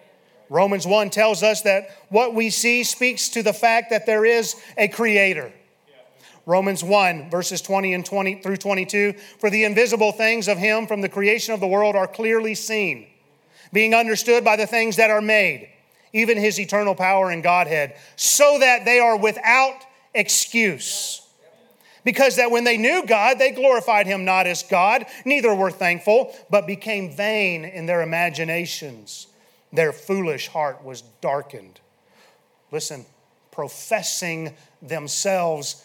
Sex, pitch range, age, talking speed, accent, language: male, 160-220 Hz, 40-59, 145 wpm, American, English